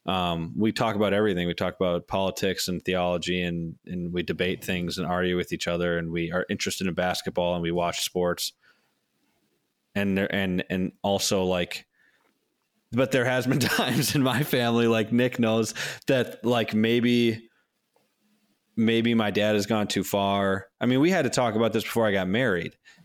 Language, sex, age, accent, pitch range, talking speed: English, male, 20-39, American, 95-125 Hz, 180 wpm